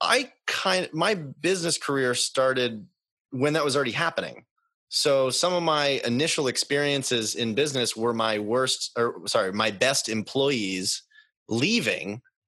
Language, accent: English, American